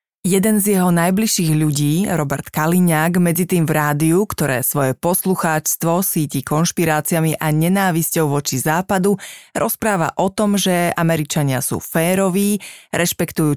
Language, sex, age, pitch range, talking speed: Slovak, female, 30-49, 155-185 Hz, 120 wpm